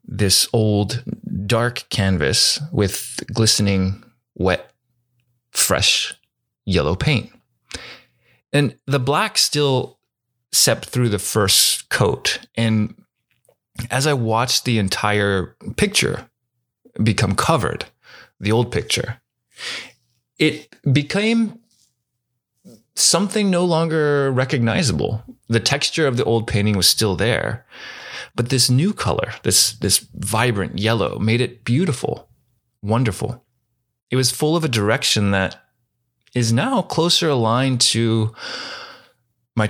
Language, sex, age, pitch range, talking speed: English, male, 20-39, 110-130 Hz, 105 wpm